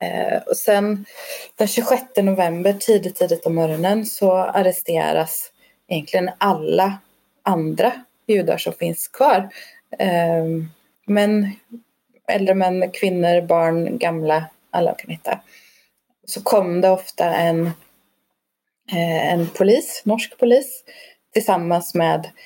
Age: 30-49